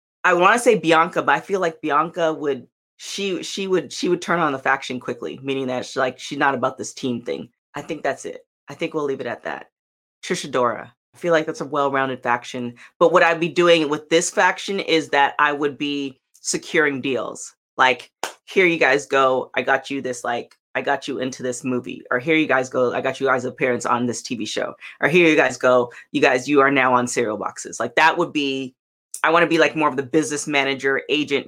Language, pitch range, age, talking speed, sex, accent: English, 135-200 Hz, 20-39, 235 wpm, female, American